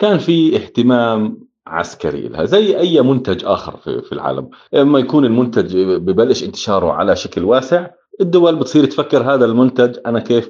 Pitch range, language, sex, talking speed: 100-165 Hz, Arabic, male, 150 wpm